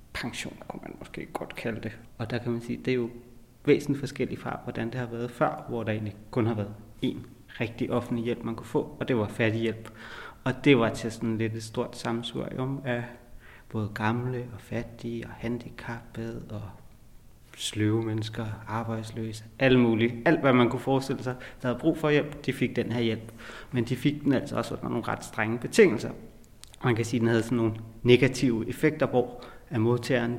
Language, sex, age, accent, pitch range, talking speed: Danish, male, 30-49, native, 115-125 Hz, 205 wpm